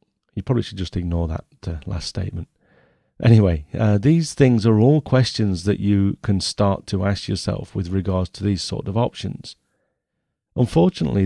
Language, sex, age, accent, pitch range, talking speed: English, male, 40-59, British, 95-115 Hz, 165 wpm